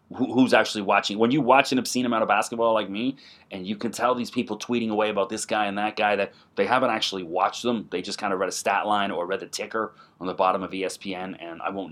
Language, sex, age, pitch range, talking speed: English, male, 30-49, 105-130 Hz, 265 wpm